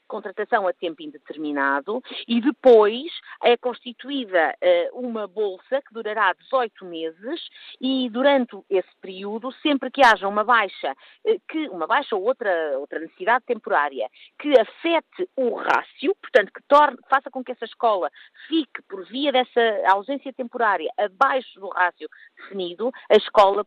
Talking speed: 130 wpm